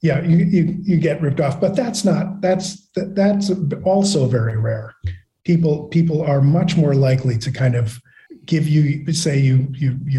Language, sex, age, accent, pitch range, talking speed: English, male, 40-59, American, 130-160 Hz, 175 wpm